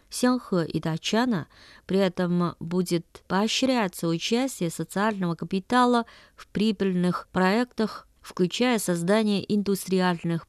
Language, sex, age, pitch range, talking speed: Russian, female, 20-39, 170-220 Hz, 90 wpm